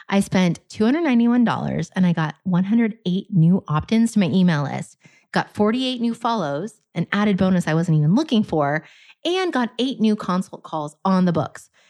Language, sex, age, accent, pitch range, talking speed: English, female, 30-49, American, 175-220 Hz, 170 wpm